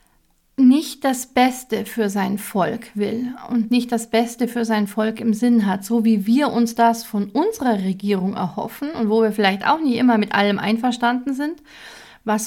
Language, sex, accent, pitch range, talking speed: German, female, German, 220-245 Hz, 185 wpm